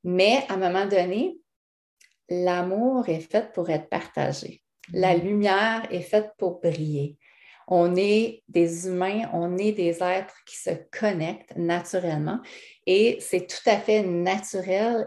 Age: 40-59